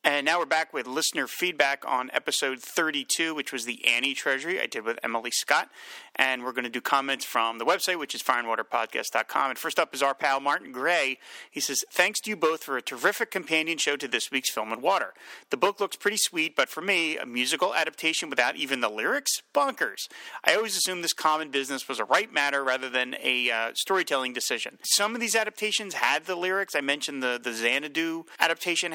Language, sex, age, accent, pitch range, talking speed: English, male, 30-49, American, 135-185 Hz, 210 wpm